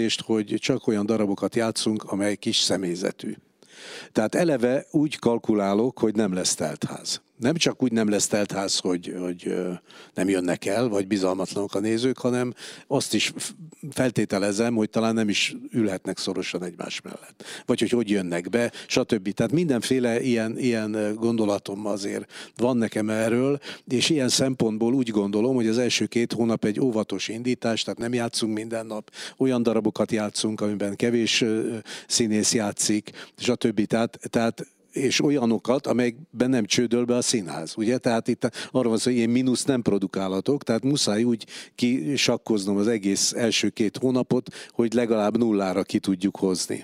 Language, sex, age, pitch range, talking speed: Hungarian, male, 60-79, 105-120 Hz, 155 wpm